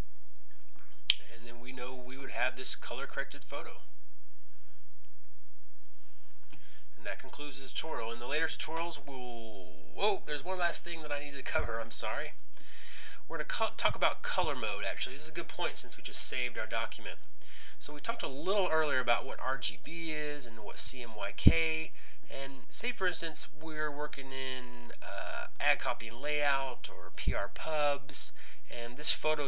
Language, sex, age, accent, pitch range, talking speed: English, male, 20-39, American, 100-145 Hz, 165 wpm